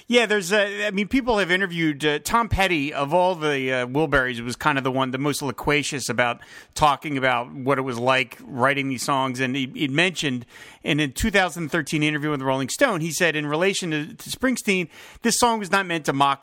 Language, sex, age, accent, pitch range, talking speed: English, male, 40-59, American, 145-205 Hz, 225 wpm